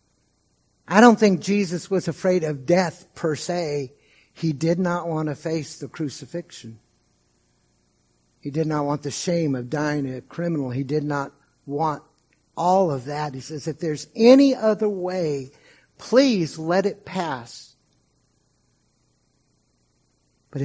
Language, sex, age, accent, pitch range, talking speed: English, male, 60-79, American, 125-195 Hz, 135 wpm